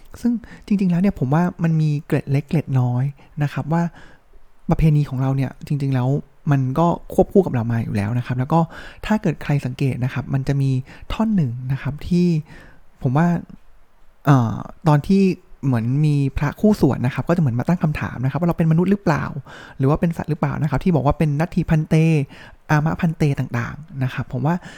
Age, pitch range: 20-39, 135-170 Hz